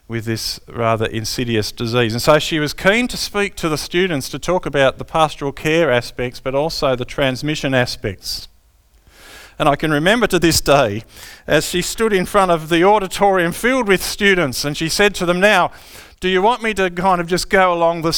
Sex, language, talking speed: male, English, 205 wpm